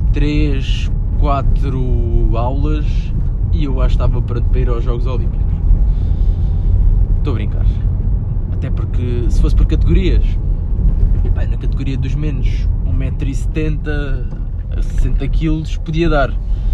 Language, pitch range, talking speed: Portuguese, 85-140 Hz, 110 wpm